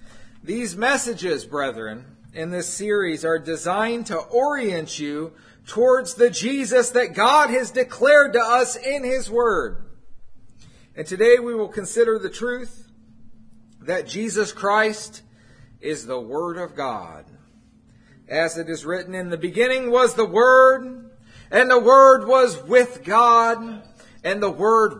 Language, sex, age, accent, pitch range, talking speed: English, male, 50-69, American, 175-245 Hz, 135 wpm